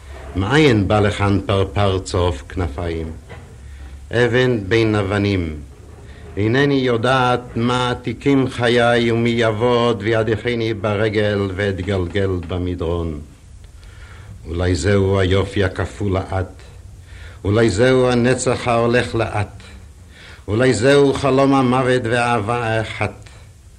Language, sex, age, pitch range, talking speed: Hebrew, male, 60-79, 90-115 Hz, 90 wpm